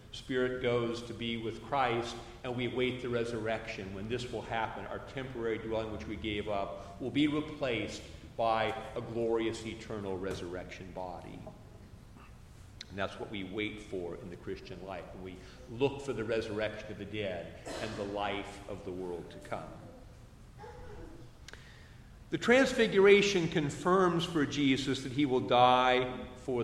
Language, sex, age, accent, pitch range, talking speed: English, male, 50-69, American, 110-140 Hz, 150 wpm